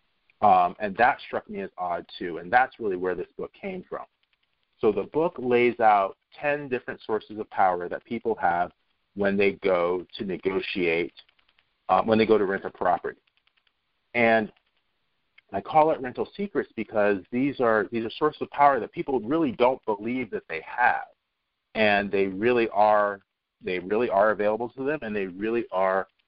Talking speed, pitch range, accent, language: 180 wpm, 95-130 Hz, American, English